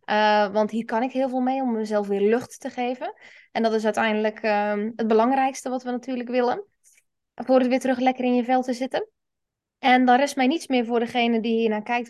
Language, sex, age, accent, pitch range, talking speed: Dutch, female, 20-39, Dutch, 220-280 Hz, 235 wpm